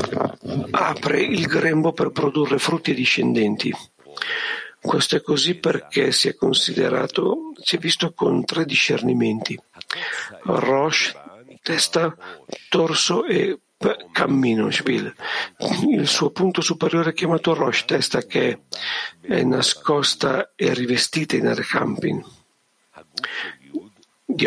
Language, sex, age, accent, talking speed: Italian, male, 50-69, native, 105 wpm